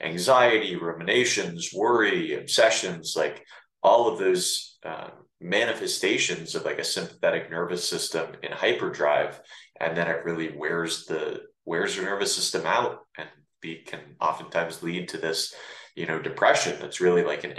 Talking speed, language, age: 145 wpm, English, 30-49